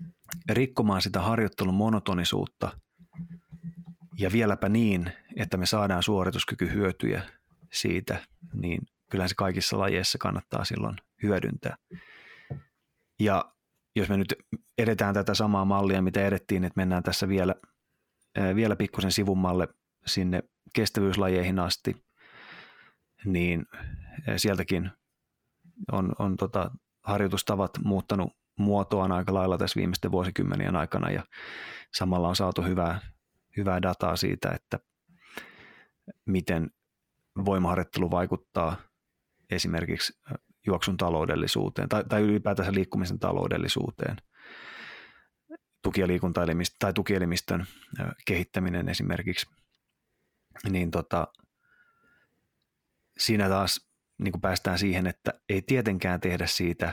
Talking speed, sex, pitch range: 95 wpm, male, 90-105 Hz